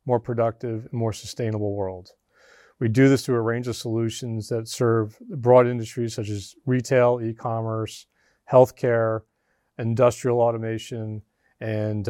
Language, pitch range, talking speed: English, 110-130 Hz, 130 wpm